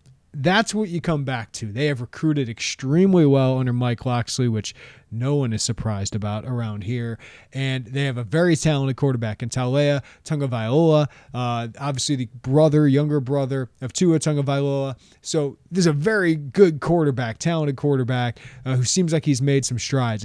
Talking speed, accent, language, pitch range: 170 wpm, American, English, 125-155 Hz